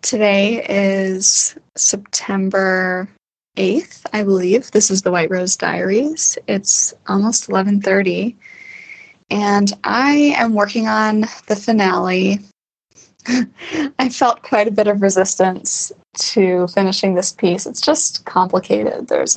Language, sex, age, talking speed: English, female, 10-29, 115 wpm